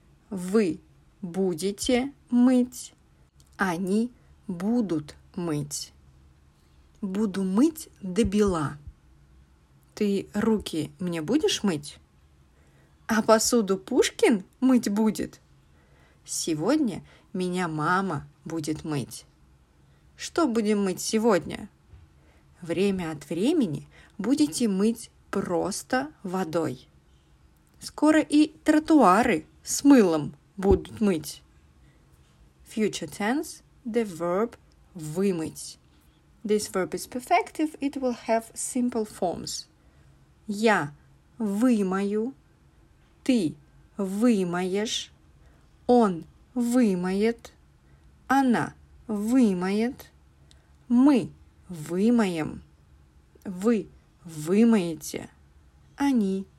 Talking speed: 75 wpm